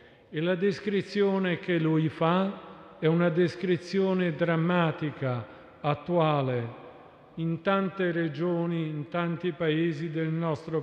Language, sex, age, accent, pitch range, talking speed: Italian, male, 50-69, native, 155-185 Hz, 105 wpm